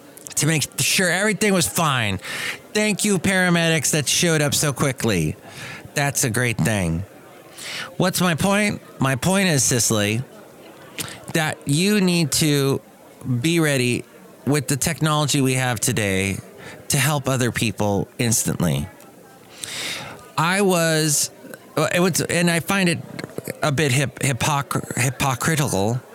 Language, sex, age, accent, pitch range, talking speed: English, male, 30-49, American, 115-155 Hz, 125 wpm